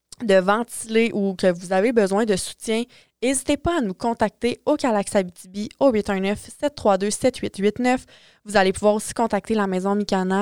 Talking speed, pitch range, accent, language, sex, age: 150 wpm, 190-225 Hz, Canadian, French, female, 20-39